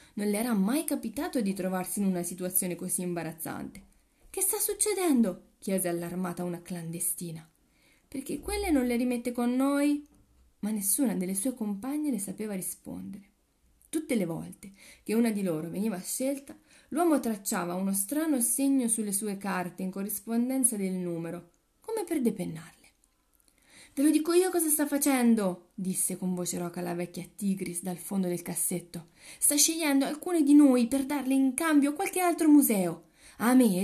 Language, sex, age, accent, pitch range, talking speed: Italian, female, 30-49, native, 185-275 Hz, 160 wpm